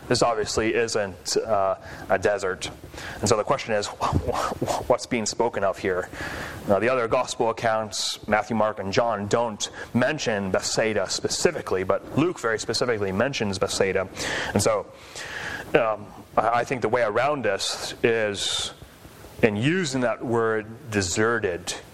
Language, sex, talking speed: English, male, 130 wpm